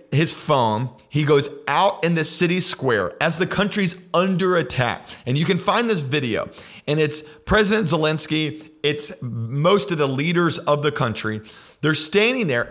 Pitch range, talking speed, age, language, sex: 130-170 Hz, 165 wpm, 40-59, English, male